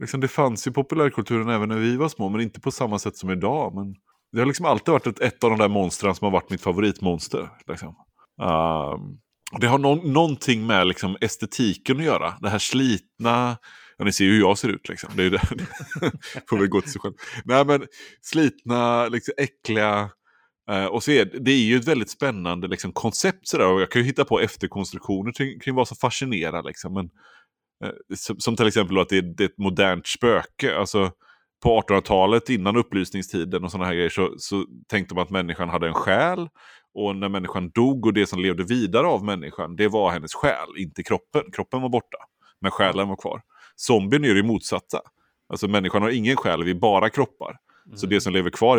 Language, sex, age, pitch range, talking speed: Swedish, male, 30-49, 95-120 Hz, 200 wpm